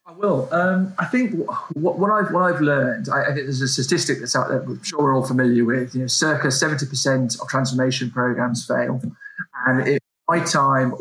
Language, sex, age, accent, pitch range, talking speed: English, male, 20-39, British, 125-140 Hz, 220 wpm